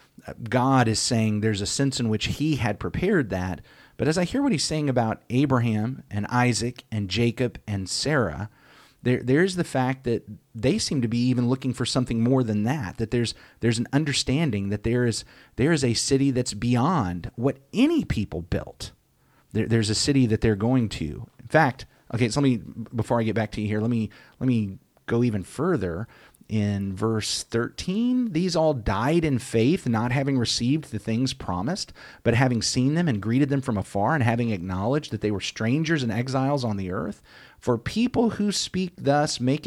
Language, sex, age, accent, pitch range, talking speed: English, male, 30-49, American, 110-145 Hz, 195 wpm